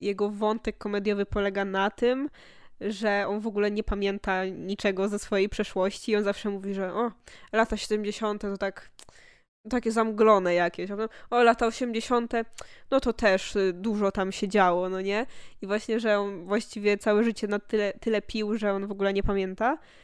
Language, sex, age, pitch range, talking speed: Polish, female, 10-29, 195-220 Hz, 175 wpm